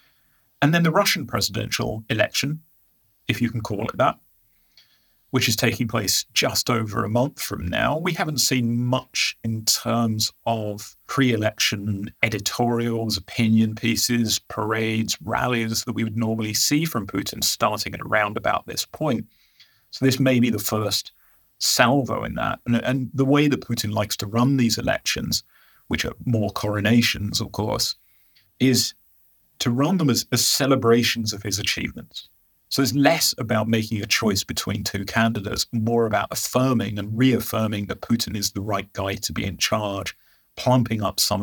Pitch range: 105-120 Hz